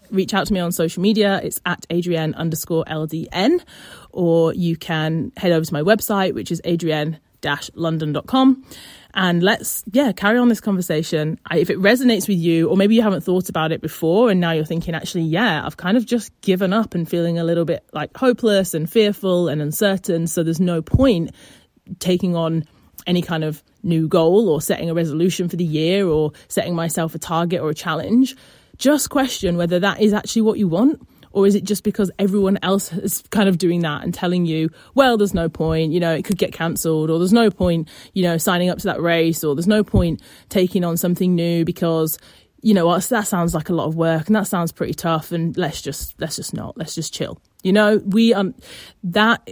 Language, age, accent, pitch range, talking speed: English, 30-49, British, 165-210 Hz, 210 wpm